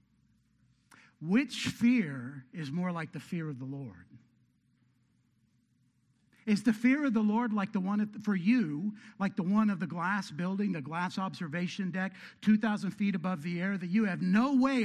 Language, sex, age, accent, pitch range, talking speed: English, male, 60-79, American, 175-230 Hz, 170 wpm